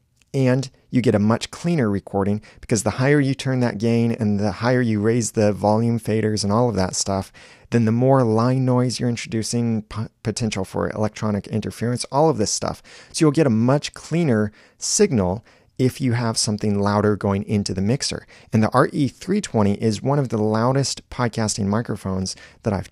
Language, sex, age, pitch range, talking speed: English, male, 30-49, 105-125 Hz, 185 wpm